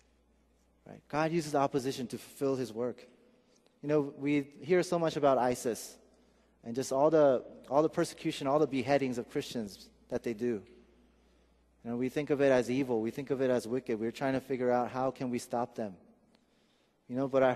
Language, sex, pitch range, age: Korean, male, 120-155 Hz, 30-49